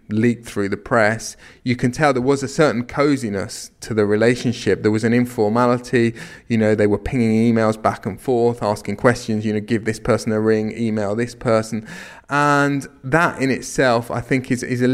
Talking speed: 195 wpm